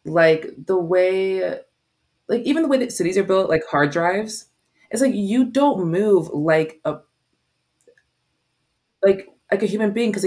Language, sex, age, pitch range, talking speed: English, female, 20-39, 150-190 Hz, 160 wpm